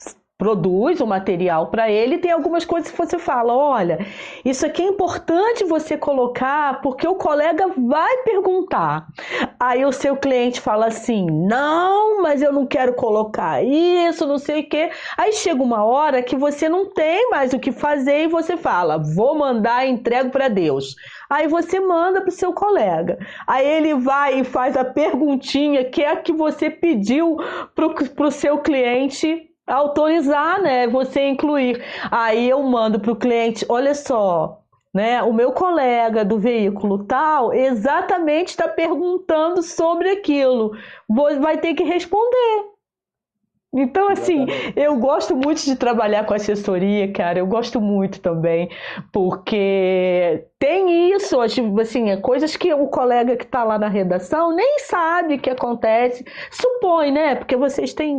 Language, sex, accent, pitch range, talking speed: Portuguese, female, Brazilian, 230-330 Hz, 155 wpm